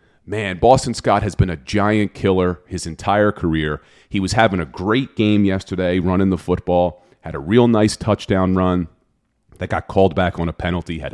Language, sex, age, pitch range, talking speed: English, male, 40-59, 85-105 Hz, 190 wpm